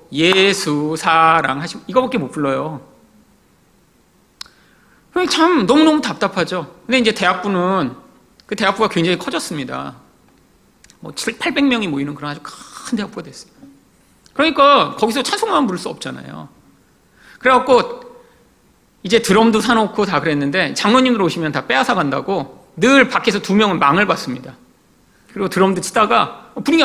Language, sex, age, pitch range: Korean, male, 40-59, 165-255 Hz